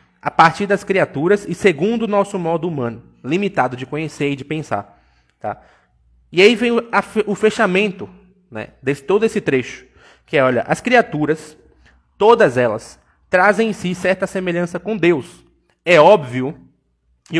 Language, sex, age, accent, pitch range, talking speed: Portuguese, male, 20-39, Brazilian, 130-200 Hz, 150 wpm